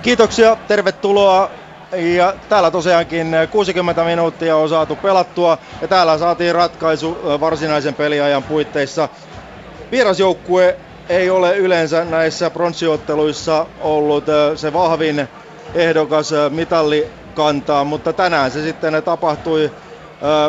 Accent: native